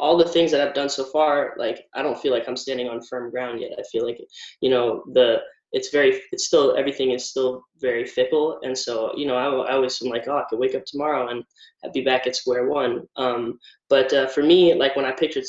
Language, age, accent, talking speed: English, 10-29, American, 250 wpm